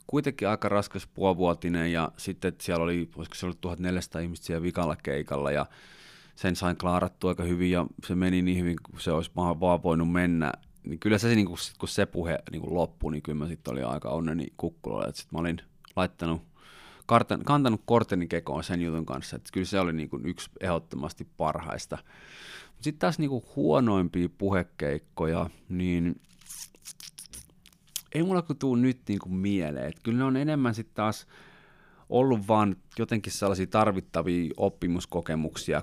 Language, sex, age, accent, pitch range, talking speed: Finnish, male, 30-49, native, 85-100 Hz, 165 wpm